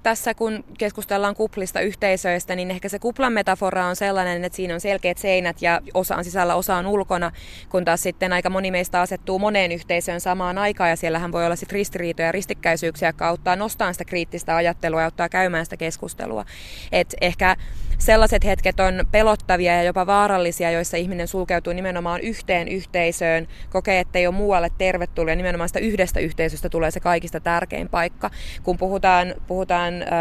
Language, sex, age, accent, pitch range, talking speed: Finnish, female, 20-39, native, 170-195 Hz, 175 wpm